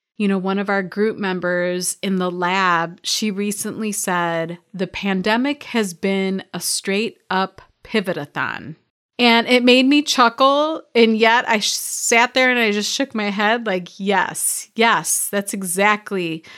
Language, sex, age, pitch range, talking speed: English, female, 30-49, 180-225 Hz, 150 wpm